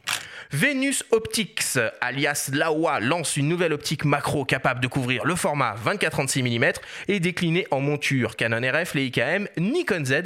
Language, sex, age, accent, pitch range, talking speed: French, male, 30-49, French, 135-200 Hz, 145 wpm